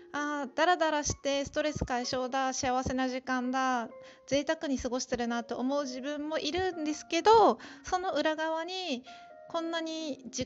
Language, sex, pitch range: Japanese, female, 235-300 Hz